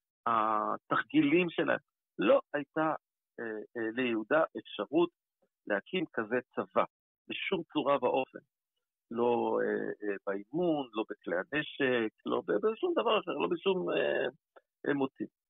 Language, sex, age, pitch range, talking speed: Hebrew, male, 50-69, 130-200 Hz, 115 wpm